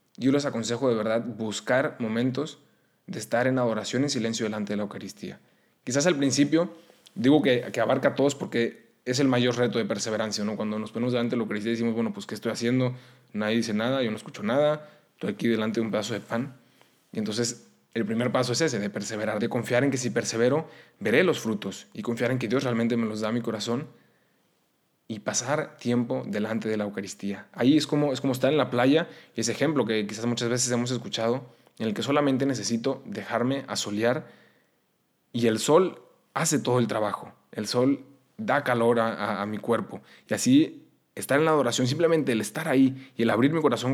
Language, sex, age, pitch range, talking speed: Spanish, male, 20-39, 110-130 Hz, 215 wpm